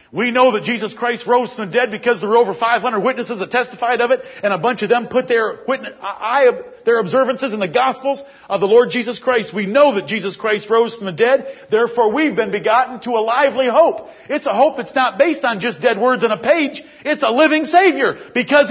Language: English